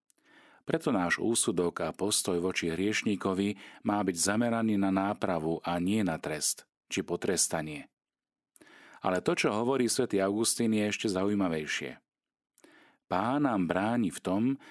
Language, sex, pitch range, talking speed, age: Slovak, male, 85-110 Hz, 130 wpm, 40-59